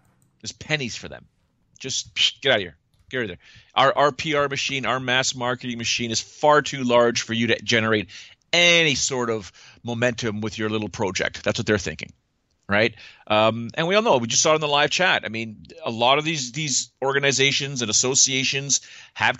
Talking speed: 210 wpm